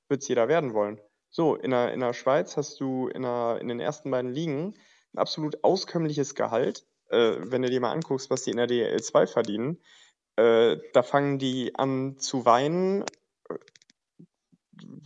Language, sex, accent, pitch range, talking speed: German, male, German, 115-140 Hz, 175 wpm